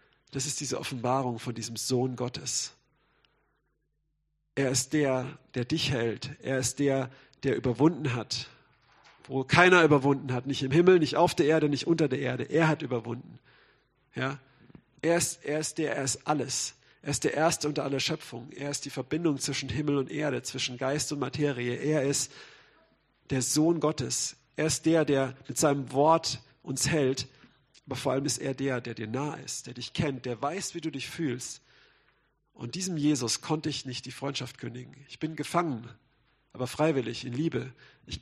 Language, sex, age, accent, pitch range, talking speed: German, male, 50-69, German, 130-155 Hz, 180 wpm